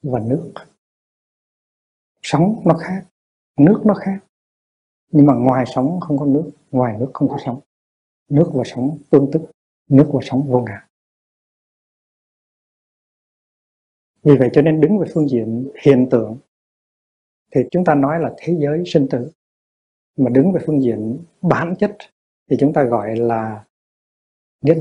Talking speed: 150 wpm